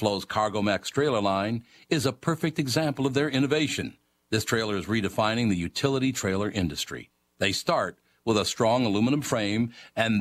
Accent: American